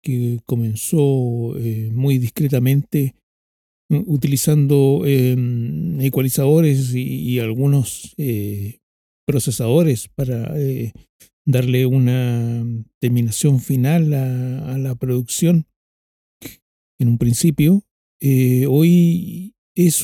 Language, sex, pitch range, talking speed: Spanish, male, 120-145 Hz, 85 wpm